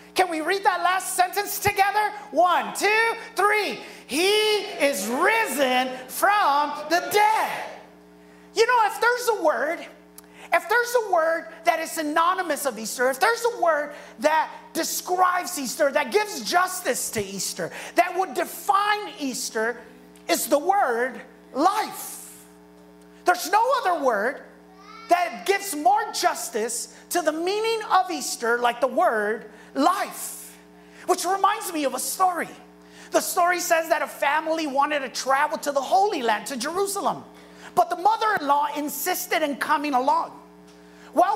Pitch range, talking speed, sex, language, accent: 260-370 Hz, 140 wpm, male, English, American